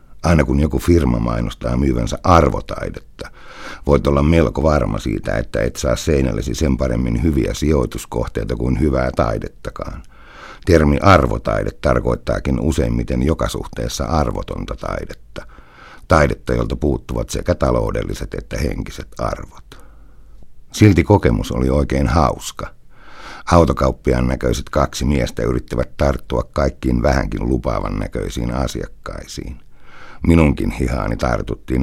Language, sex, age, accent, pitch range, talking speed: Finnish, male, 60-79, native, 65-75 Hz, 110 wpm